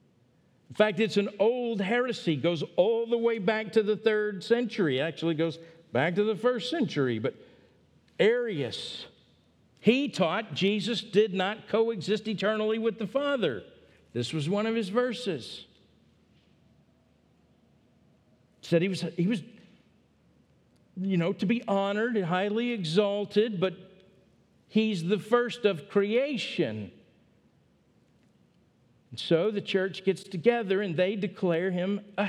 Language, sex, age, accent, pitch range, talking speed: English, male, 50-69, American, 165-220 Hz, 135 wpm